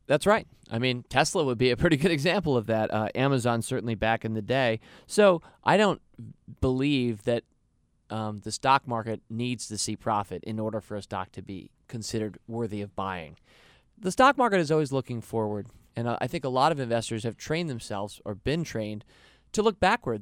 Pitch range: 115-145 Hz